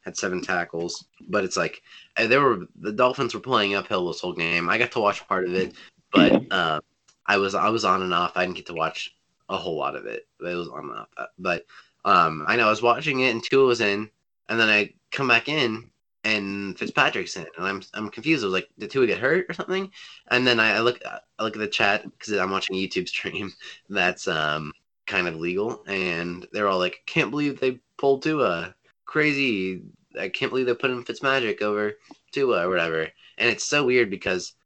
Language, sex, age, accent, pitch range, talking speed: English, male, 20-39, American, 90-125 Hz, 225 wpm